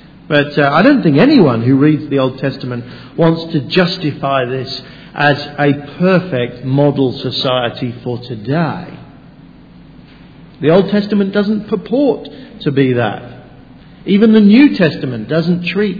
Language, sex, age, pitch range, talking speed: English, male, 50-69, 130-170 Hz, 135 wpm